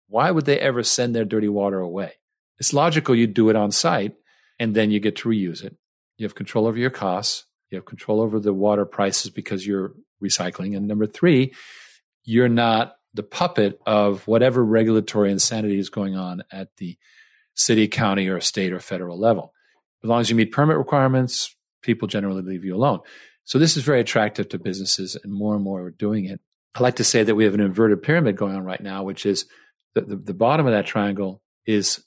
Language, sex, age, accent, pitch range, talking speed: English, male, 40-59, American, 100-120 Hz, 210 wpm